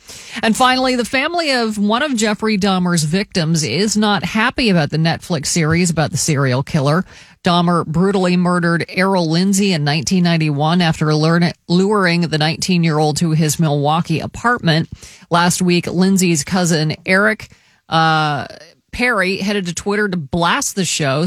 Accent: American